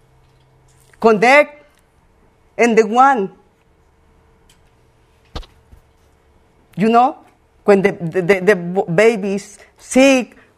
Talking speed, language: 70 wpm, English